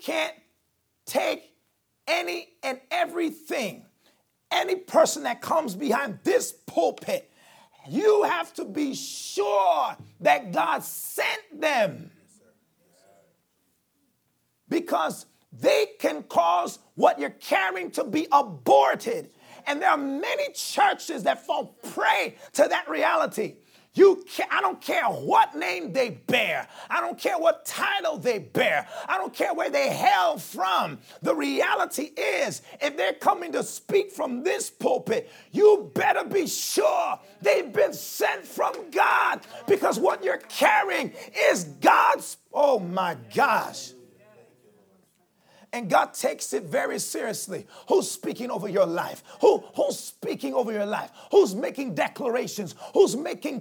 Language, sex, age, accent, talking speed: English, male, 40-59, American, 125 wpm